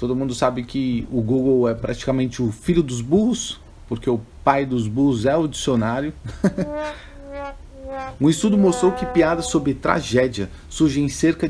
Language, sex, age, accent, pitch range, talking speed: Italian, male, 40-59, Brazilian, 110-155 Hz, 155 wpm